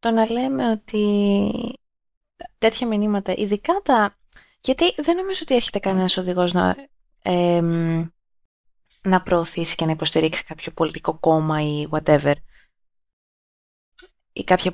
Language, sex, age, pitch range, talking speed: Greek, female, 20-39, 160-210 Hz, 120 wpm